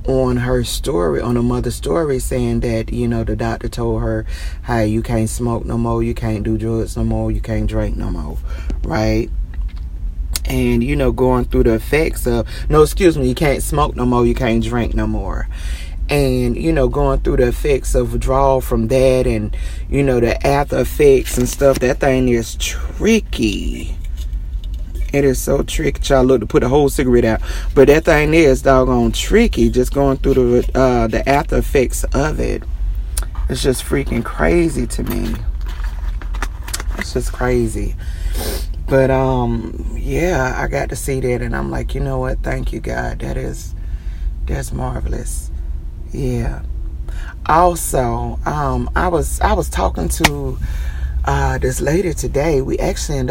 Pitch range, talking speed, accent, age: 80-130 Hz, 170 wpm, American, 30-49